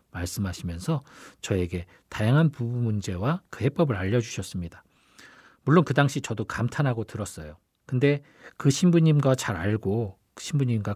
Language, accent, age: Korean, native, 40-59